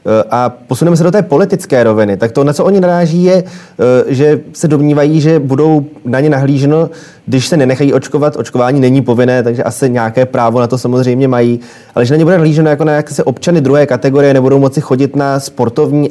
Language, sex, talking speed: Czech, male, 200 wpm